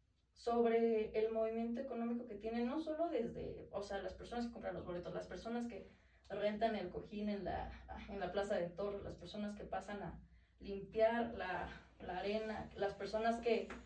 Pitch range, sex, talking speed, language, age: 200-230 Hz, female, 180 wpm, Spanish, 20-39